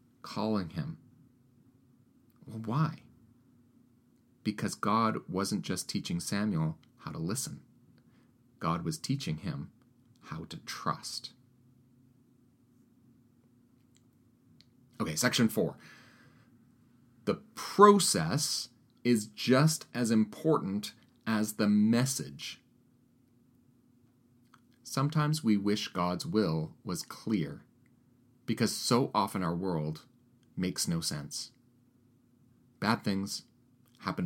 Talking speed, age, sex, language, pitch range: 90 wpm, 40-59, male, English, 110-125 Hz